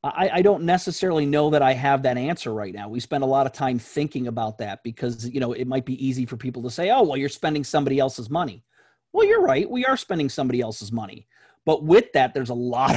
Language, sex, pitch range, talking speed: English, male, 120-145 Hz, 250 wpm